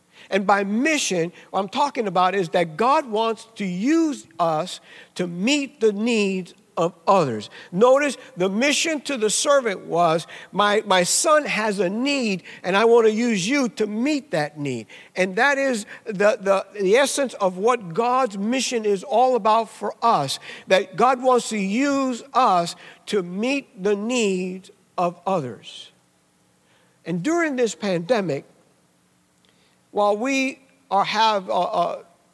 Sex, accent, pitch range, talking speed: male, American, 180-235 Hz, 150 wpm